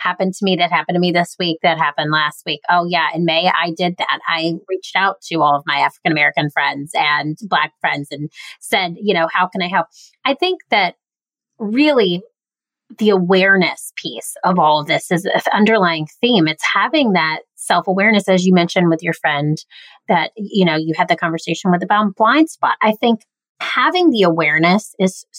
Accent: American